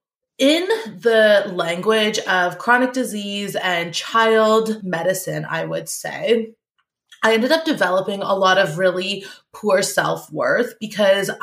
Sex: female